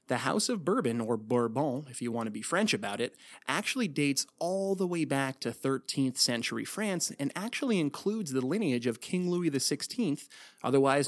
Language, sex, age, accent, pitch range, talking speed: English, male, 30-49, American, 120-170 Hz, 185 wpm